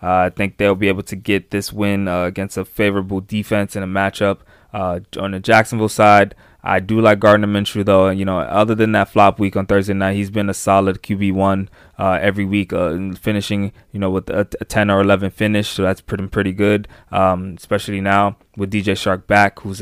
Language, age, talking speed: English, 20-39, 220 wpm